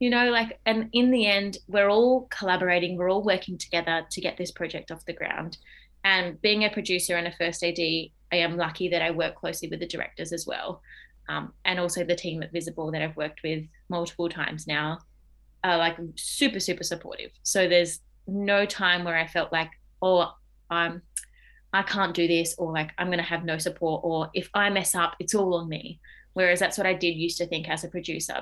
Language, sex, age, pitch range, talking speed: English, female, 20-39, 165-195 Hz, 220 wpm